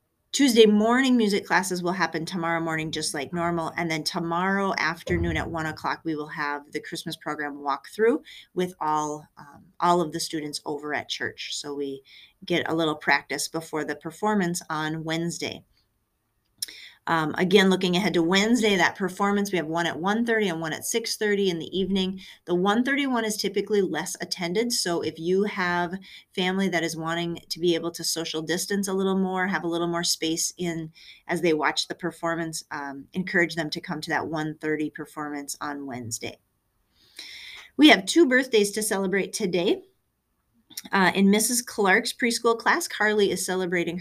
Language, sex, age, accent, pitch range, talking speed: English, female, 30-49, American, 160-200 Hz, 175 wpm